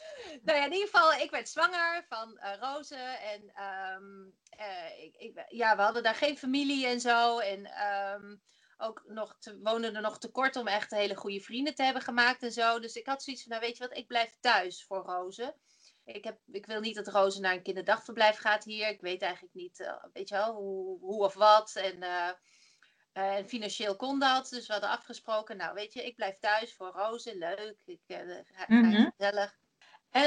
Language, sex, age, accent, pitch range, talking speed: Dutch, female, 30-49, Dutch, 200-270 Hz, 220 wpm